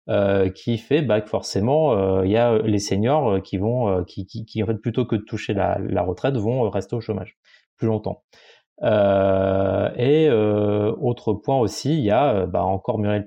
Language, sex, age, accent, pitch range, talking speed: French, male, 20-39, French, 100-120 Hz, 200 wpm